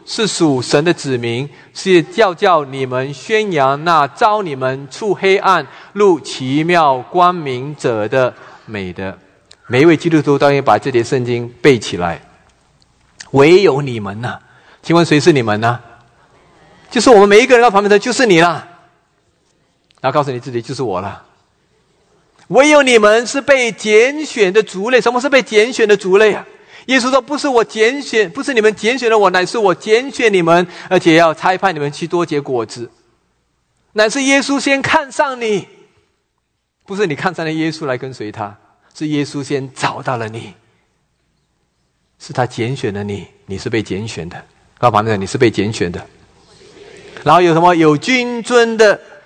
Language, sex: English, male